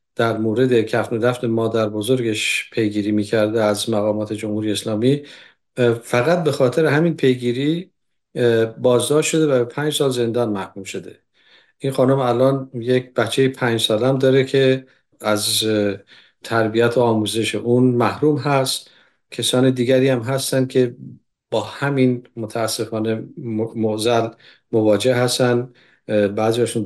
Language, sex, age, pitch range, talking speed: Persian, male, 50-69, 110-130 Hz, 125 wpm